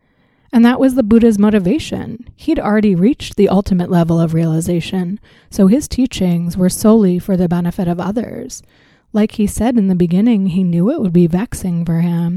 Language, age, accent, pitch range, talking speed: English, 30-49, American, 175-205 Hz, 185 wpm